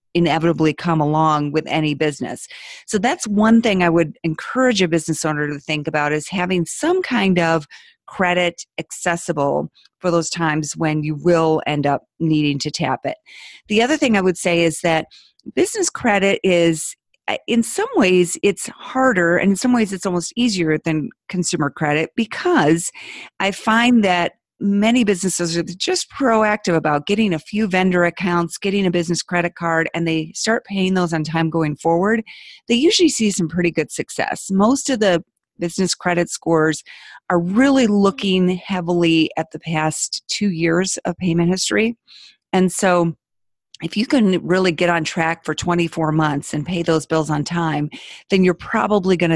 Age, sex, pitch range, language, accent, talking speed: 40-59, female, 160-200 Hz, English, American, 170 wpm